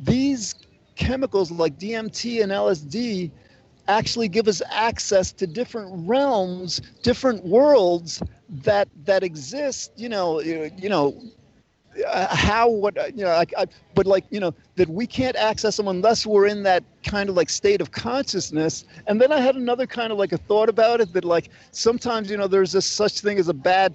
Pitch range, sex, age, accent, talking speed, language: 170-225 Hz, male, 40-59, American, 180 wpm, English